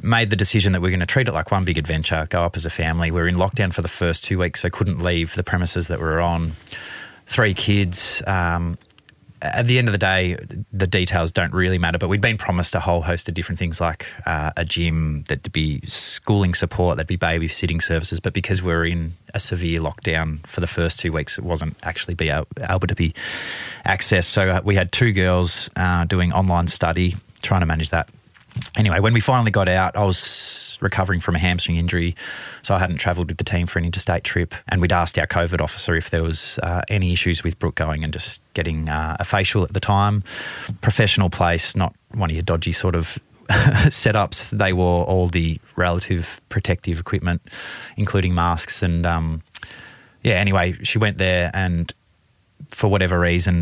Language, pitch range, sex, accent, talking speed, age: English, 85-100 Hz, male, Australian, 210 wpm, 30-49